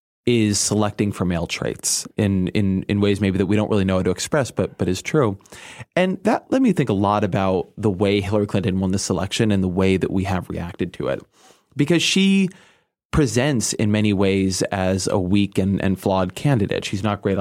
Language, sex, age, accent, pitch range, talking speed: English, male, 30-49, American, 95-115 Hz, 215 wpm